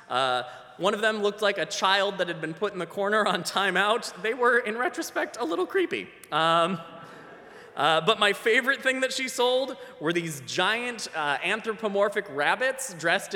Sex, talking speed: male, 180 wpm